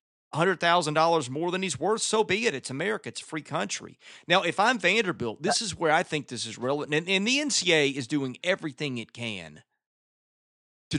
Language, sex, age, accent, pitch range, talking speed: English, male, 30-49, American, 130-195 Hz, 190 wpm